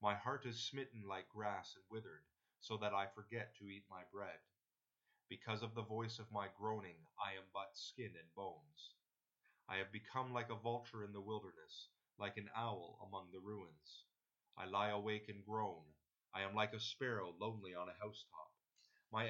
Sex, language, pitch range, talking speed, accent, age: male, English, 100-115 Hz, 185 wpm, American, 30-49